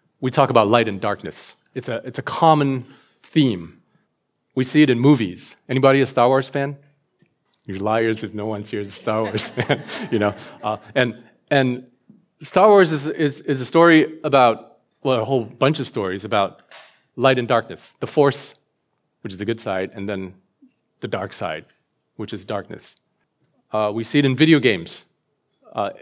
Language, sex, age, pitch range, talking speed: English, male, 30-49, 115-140 Hz, 180 wpm